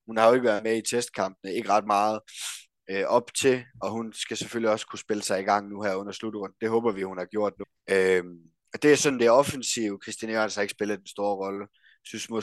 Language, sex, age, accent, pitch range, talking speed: Danish, male, 20-39, native, 100-115 Hz, 260 wpm